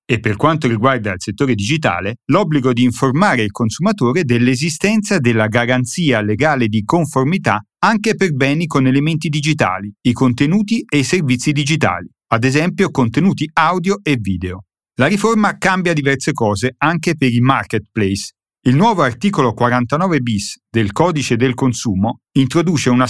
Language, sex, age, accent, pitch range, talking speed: Italian, male, 40-59, native, 115-155 Hz, 145 wpm